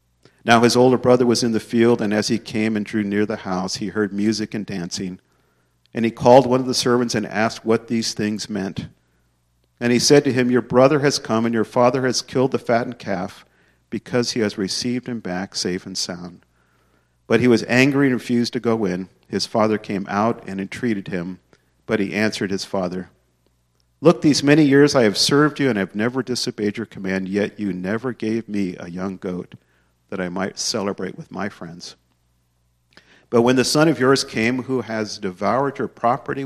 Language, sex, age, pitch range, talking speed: English, male, 50-69, 85-115 Hz, 200 wpm